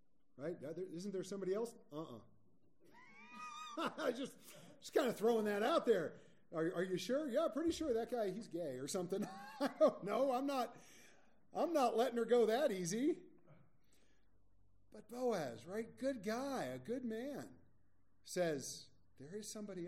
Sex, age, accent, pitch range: male, 40-59, American, 140-210 Hz